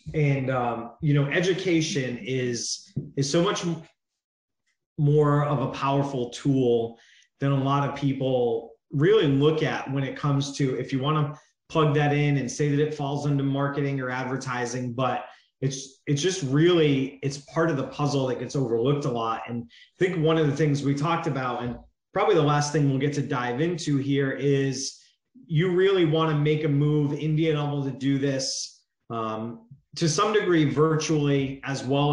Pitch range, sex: 130-150 Hz, male